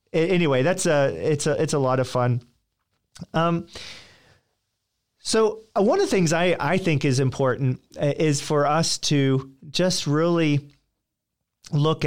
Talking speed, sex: 140 wpm, male